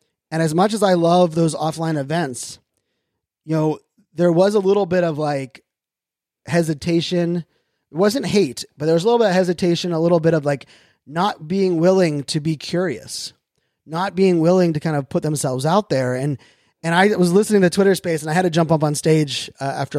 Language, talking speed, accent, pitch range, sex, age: English, 205 wpm, American, 150-180 Hz, male, 20-39